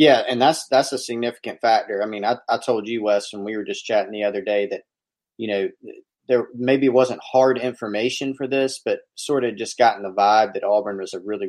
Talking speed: 230 wpm